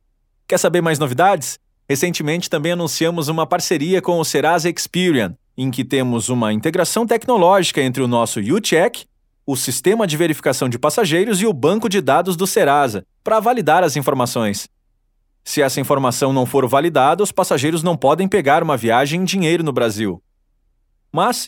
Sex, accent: male, Brazilian